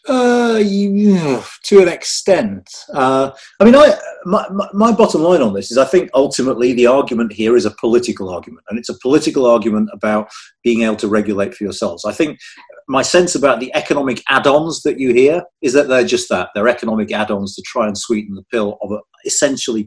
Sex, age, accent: male, 40-59, British